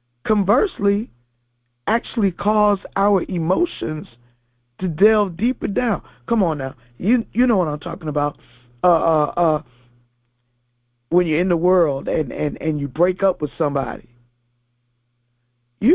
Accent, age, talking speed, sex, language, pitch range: American, 50-69, 135 wpm, male, English, 120-185 Hz